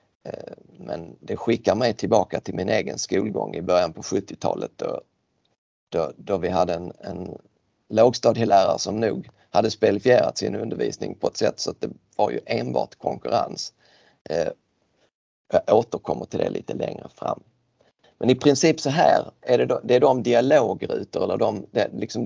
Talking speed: 160 wpm